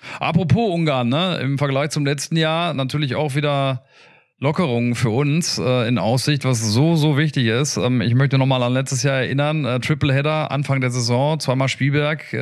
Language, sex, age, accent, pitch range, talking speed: German, male, 40-59, German, 125-150 Hz, 190 wpm